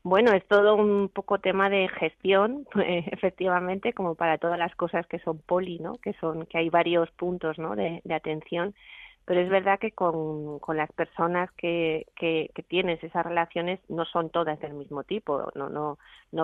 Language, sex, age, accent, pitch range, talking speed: Spanish, female, 30-49, Spanish, 160-185 Hz, 195 wpm